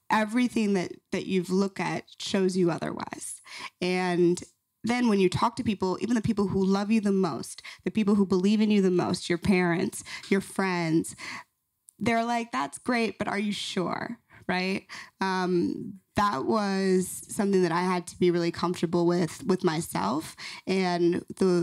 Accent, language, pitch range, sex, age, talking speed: American, English, 175-195 Hz, female, 20-39, 170 wpm